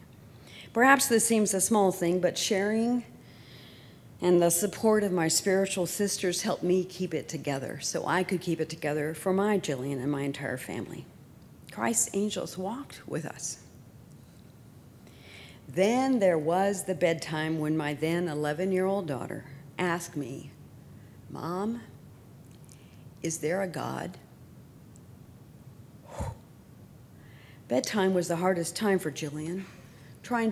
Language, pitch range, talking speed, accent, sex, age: English, 160-210 Hz, 125 wpm, American, female, 50-69